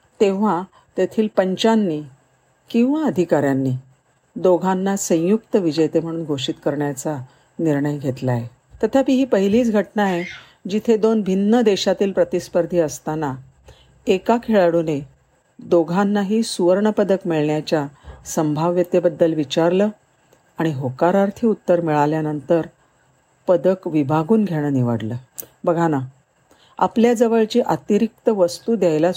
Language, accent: Marathi, native